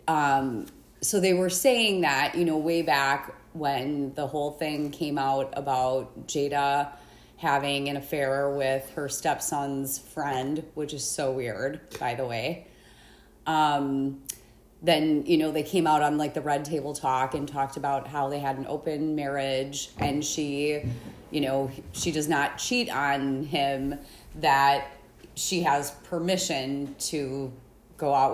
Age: 30-49